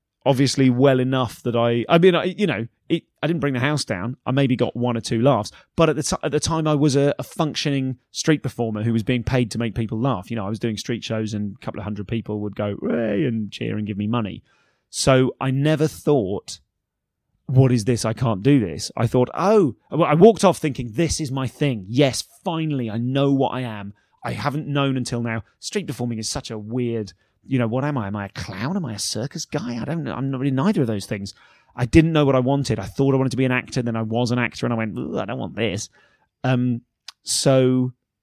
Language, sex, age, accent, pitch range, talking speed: English, male, 30-49, British, 115-145 Hz, 245 wpm